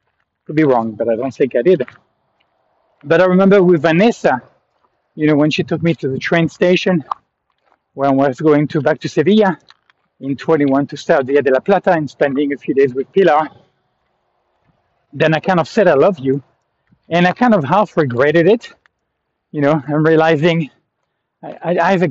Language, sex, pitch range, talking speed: English, male, 140-185 Hz, 185 wpm